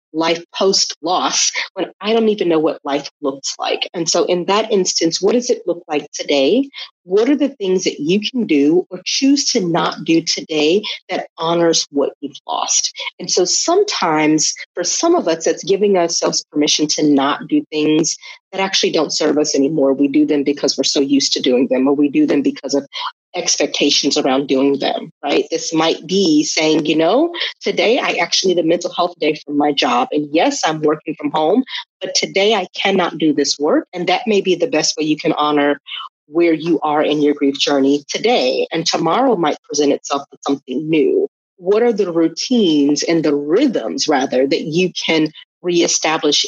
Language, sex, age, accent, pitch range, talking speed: English, female, 30-49, American, 145-185 Hz, 195 wpm